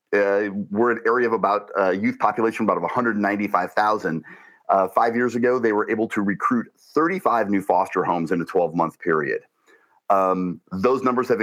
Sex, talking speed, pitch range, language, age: male, 185 wpm, 100-125 Hz, English, 40-59